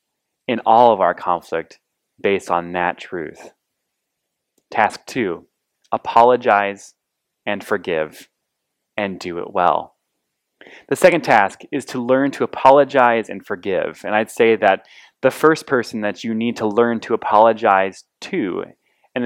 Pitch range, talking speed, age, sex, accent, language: 95-125 Hz, 135 wpm, 20-39, male, American, English